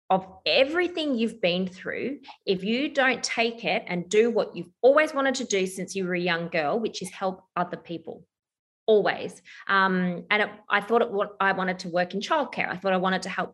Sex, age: female, 20-39